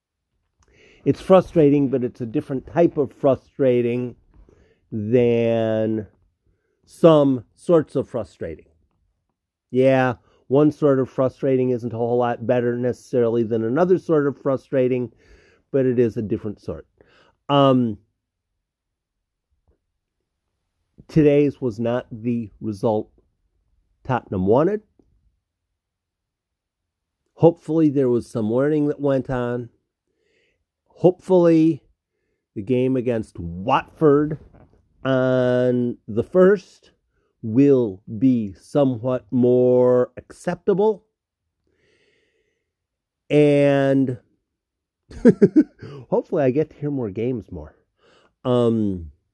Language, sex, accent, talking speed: English, male, American, 90 wpm